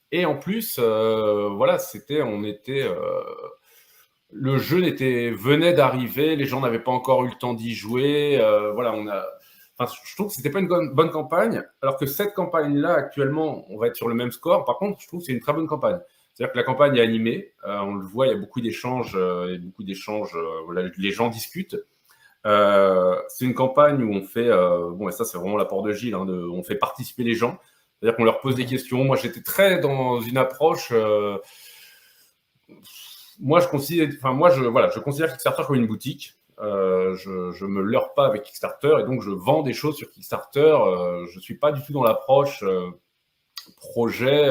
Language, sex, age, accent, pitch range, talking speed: French, male, 30-49, French, 105-145 Hz, 215 wpm